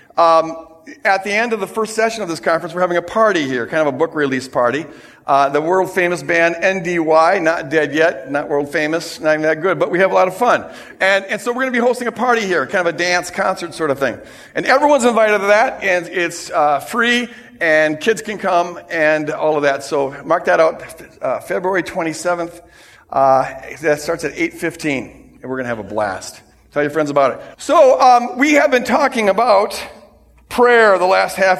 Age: 50-69